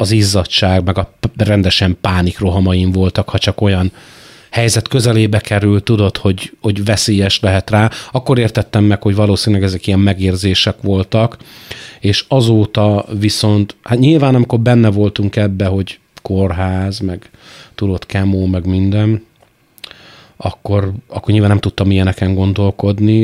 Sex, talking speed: male, 130 wpm